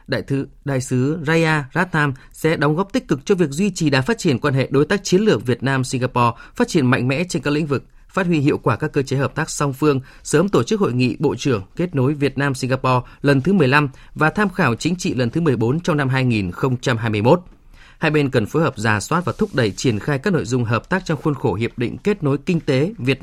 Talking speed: 255 wpm